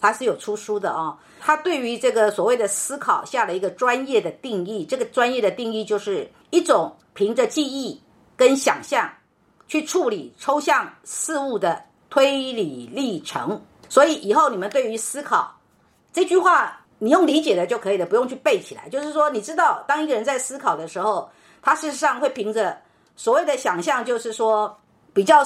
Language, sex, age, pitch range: Chinese, female, 50-69, 220-310 Hz